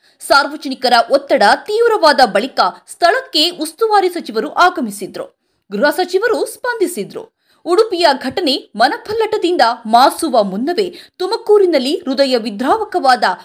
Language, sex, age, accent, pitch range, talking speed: Kannada, female, 20-39, native, 255-390 Hz, 85 wpm